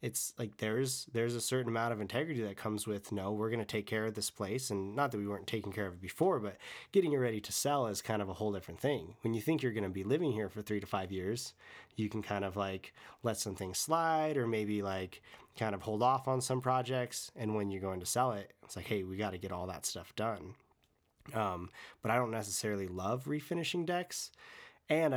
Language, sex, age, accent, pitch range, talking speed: English, male, 30-49, American, 100-130 Hz, 250 wpm